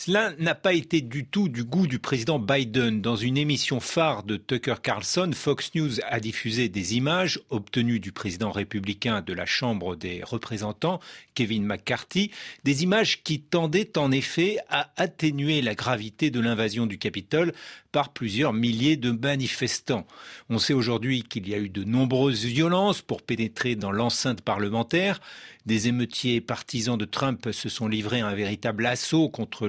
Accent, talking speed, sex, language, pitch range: French, 165 wpm, male, French, 110-145 Hz